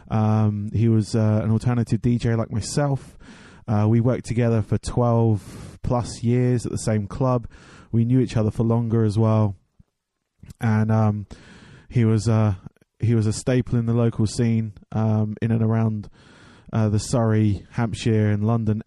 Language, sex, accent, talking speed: English, male, British, 165 wpm